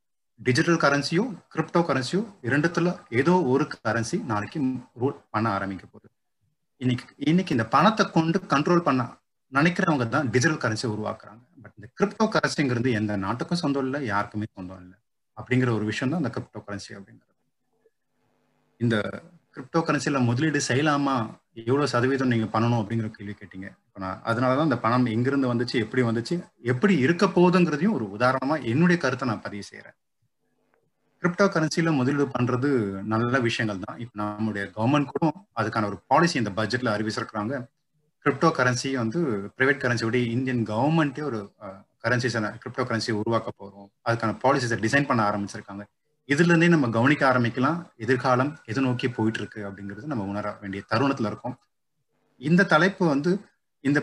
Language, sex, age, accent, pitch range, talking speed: Tamil, male, 30-49, native, 110-150 Hz, 140 wpm